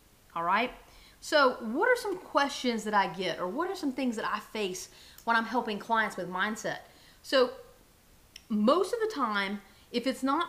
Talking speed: 185 wpm